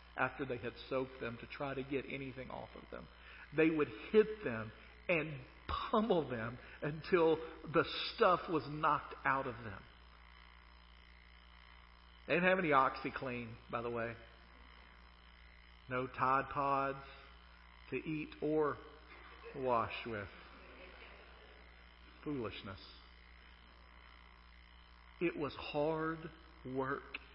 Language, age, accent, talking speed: English, 50-69, American, 105 wpm